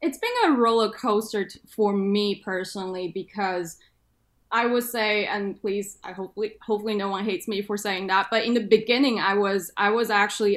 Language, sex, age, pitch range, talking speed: English, female, 20-39, 175-220 Hz, 180 wpm